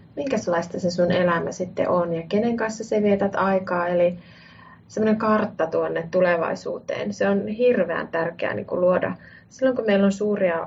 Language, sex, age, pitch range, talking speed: Finnish, female, 30-49, 175-215 Hz, 155 wpm